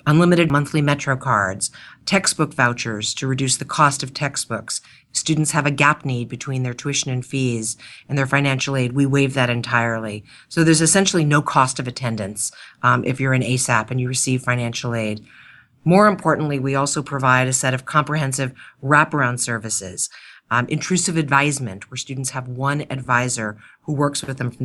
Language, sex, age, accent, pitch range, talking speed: English, female, 40-59, American, 125-150 Hz, 175 wpm